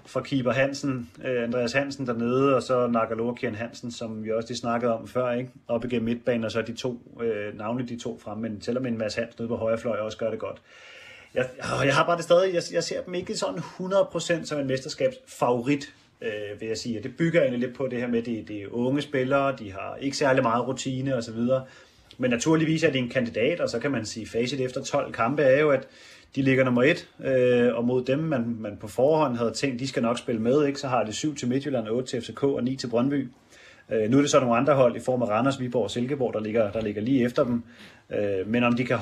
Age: 30-49